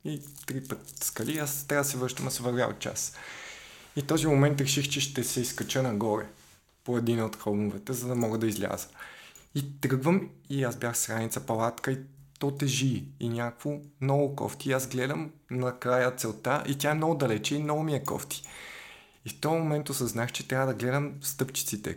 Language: Bulgarian